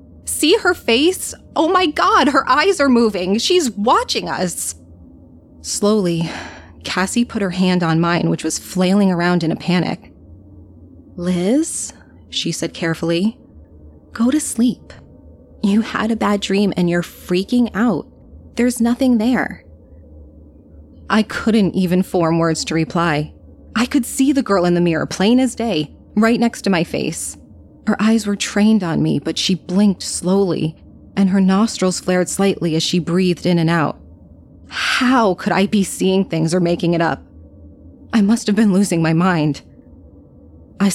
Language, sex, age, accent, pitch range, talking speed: English, female, 20-39, American, 160-210 Hz, 160 wpm